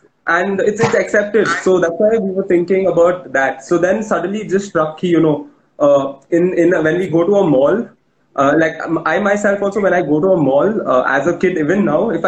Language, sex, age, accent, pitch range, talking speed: English, male, 20-39, Indian, 145-190 Hz, 225 wpm